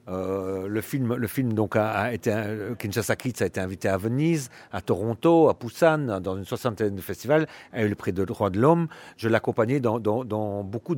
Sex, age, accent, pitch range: male, 40-59, French, 100-125 Hz